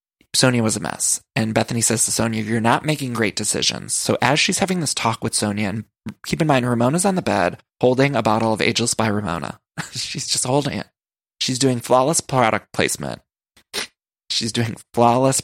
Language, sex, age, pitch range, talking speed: English, male, 20-39, 110-135 Hz, 190 wpm